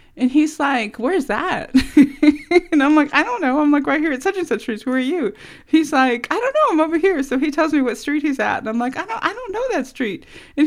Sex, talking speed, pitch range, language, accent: female, 280 wpm, 235-310 Hz, English, American